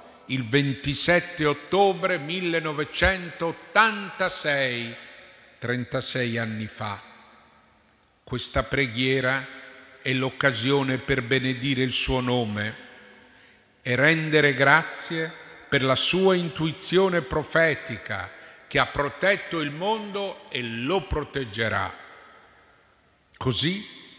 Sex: male